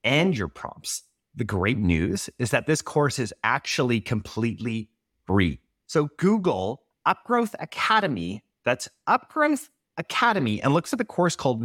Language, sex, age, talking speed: English, male, 30-49, 140 wpm